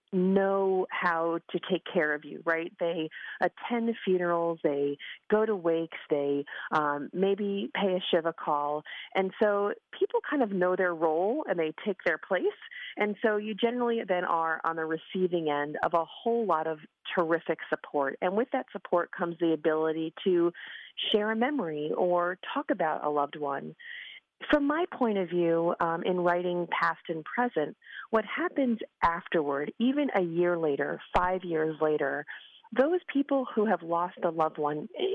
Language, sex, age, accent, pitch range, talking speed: English, female, 40-59, American, 165-230 Hz, 170 wpm